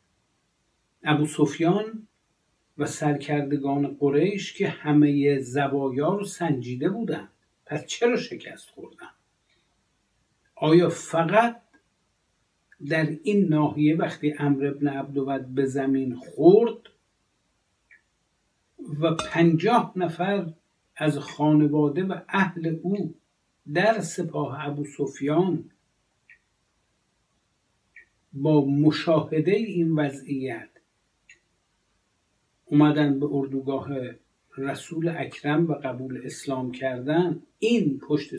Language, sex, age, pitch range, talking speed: Persian, male, 60-79, 140-180 Hz, 80 wpm